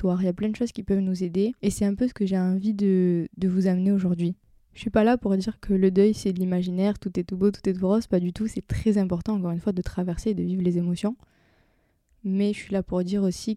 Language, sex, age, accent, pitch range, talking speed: French, female, 20-39, French, 180-210 Hz, 295 wpm